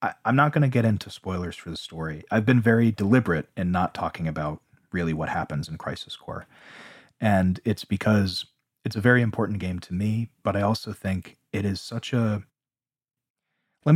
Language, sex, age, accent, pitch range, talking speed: English, male, 30-49, American, 90-125 Hz, 185 wpm